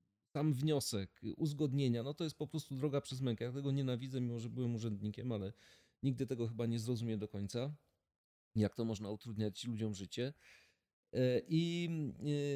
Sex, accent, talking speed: male, native, 160 wpm